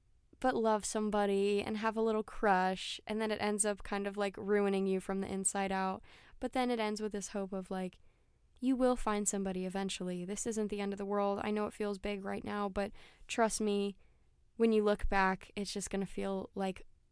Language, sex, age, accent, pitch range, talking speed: English, female, 10-29, American, 185-210 Hz, 215 wpm